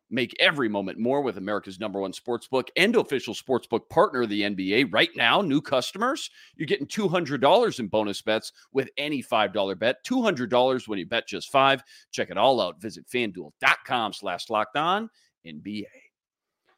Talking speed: 165 wpm